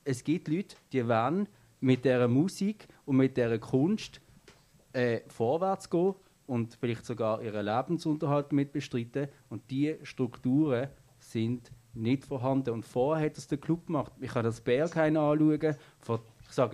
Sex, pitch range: male, 125-160 Hz